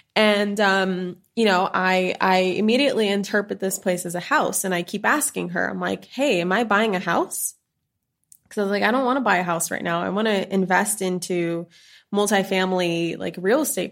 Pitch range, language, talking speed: 180-210 Hz, English, 205 wpm